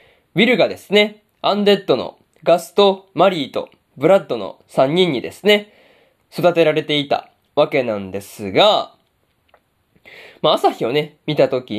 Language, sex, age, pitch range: Japanese, male, 20-39, 140-195 Hz